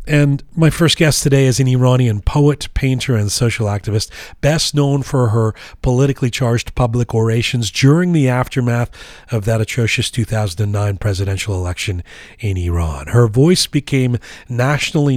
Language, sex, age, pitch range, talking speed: English, male, 40-59, 110-140 Hz, 140 wpm